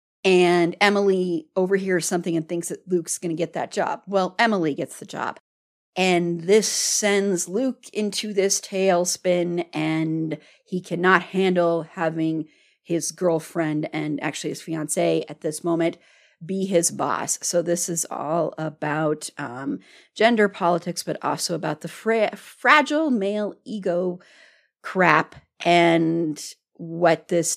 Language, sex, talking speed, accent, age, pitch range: English, female, 135 wpm, American, 40-59, 160-195 Hz